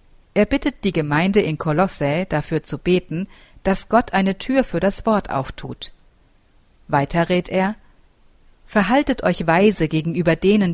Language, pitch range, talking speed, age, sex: German, 155-205 Hz, 140 wpm, 50-69, female